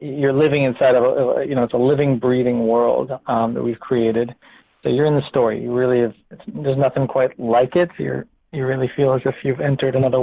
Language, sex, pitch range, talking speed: English, male, 120-145 Hz, 230 wpm